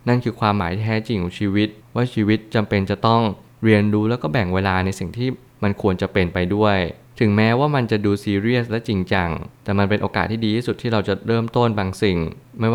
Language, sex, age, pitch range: Thai, male, 20-39, 95-115 Hz